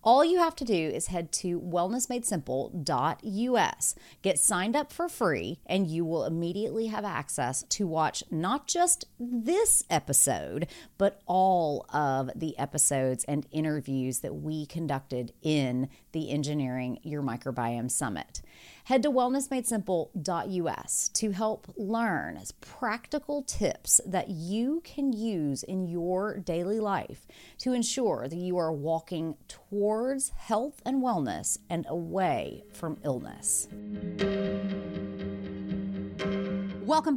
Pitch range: 170-235 Hz